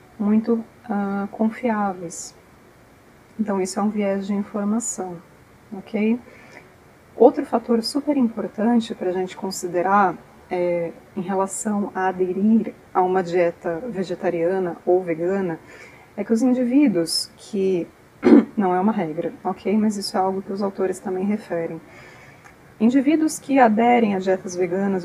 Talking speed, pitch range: 130 wpm, 185-230 Hz